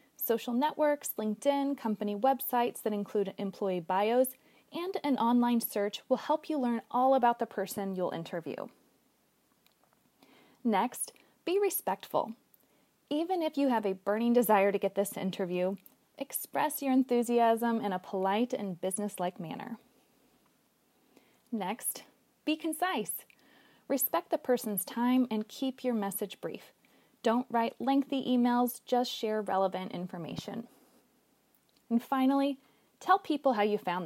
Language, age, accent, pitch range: English, 20-39, American, 210-270 Hz